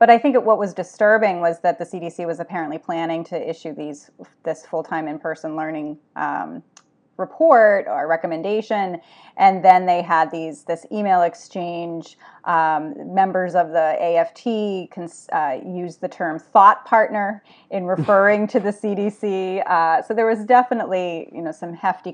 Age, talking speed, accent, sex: 30-49, 160 wpm, American, female